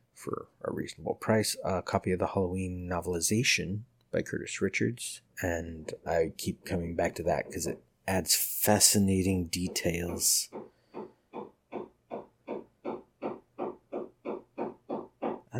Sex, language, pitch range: male, English, 90-100 Hz